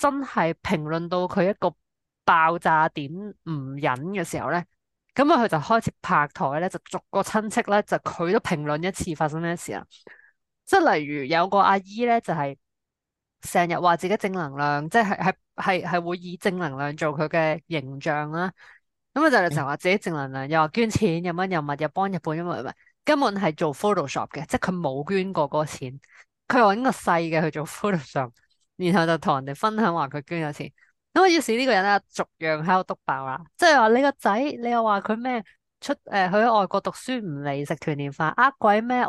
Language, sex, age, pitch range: Chinese, female, 20-39, 155-215 Hz